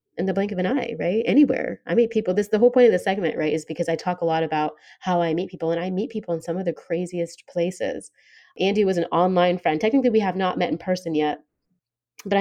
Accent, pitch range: American, 160-200 Hz